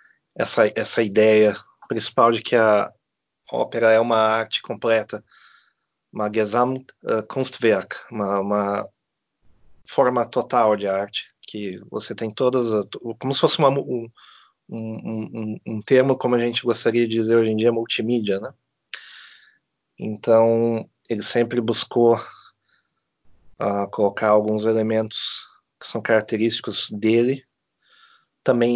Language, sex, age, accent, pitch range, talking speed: Portuguese, male, 30-49, Brazilian, 100-120 Hz, 110 wpm